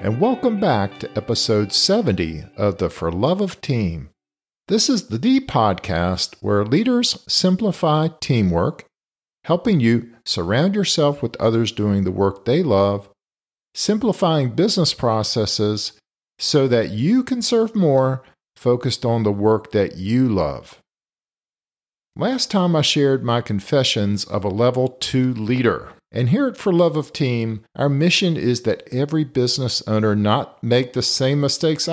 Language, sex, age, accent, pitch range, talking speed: English, male, 50-69, American, 105-150 Hz, 145 wpm